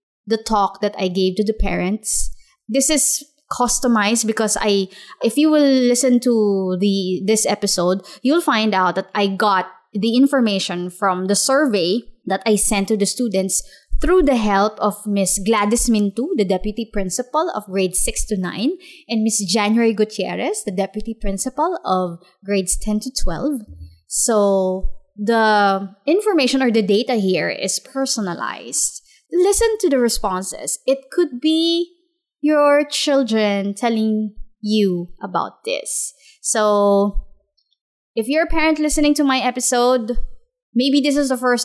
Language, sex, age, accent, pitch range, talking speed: English, female, 20-39, Filipino, 205-265 Hz, 145 wpm